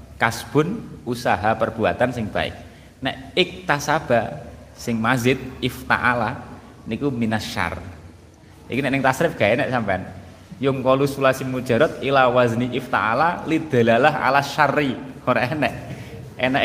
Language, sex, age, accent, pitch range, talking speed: Indonesian, male, 20-39, native, 115-140 Hz, 125 wpm